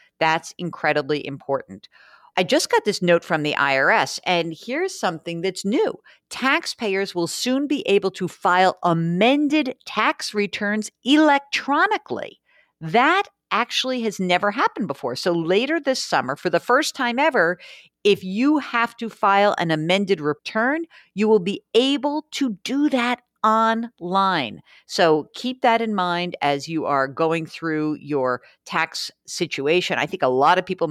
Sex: female